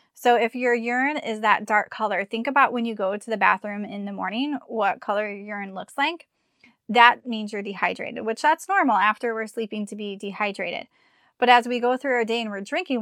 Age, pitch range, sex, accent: 20-39, 210-250 Hz, female, American